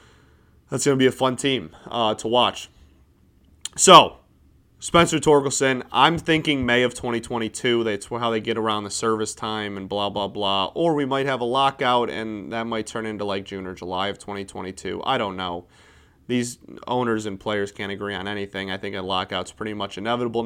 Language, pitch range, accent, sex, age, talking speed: English, 100-130 Hz, American, male, 30-49, 195 wpm